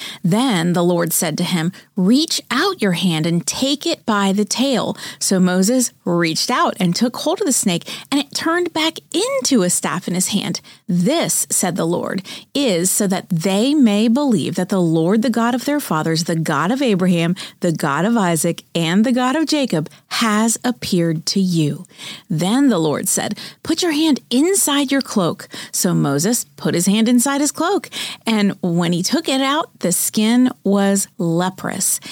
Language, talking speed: English, 185 wpm